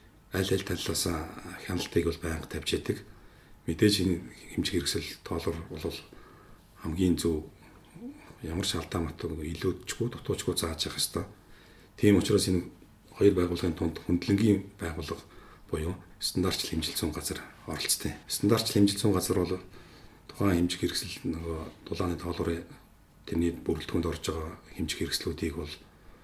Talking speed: 85 wpm